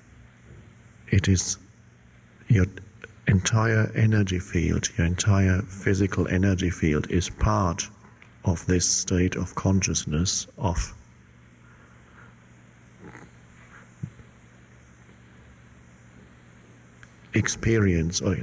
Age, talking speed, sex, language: 60-79, 65 wpm, male, English